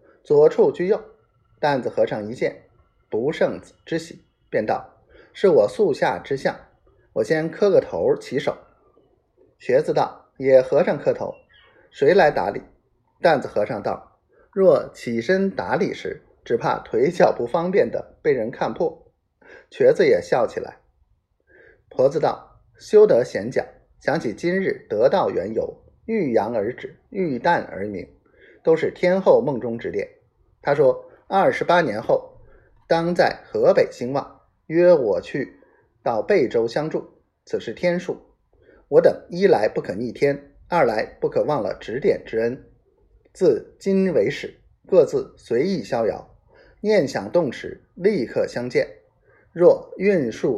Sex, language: male, Chinese